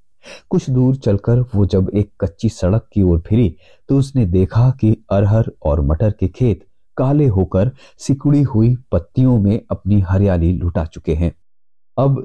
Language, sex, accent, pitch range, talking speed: Hindi, male, native, 90-125 Hz, 155 wpm